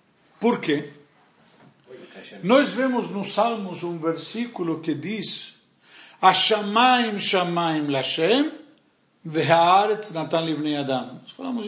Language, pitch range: Portuguese, 185-255 Hz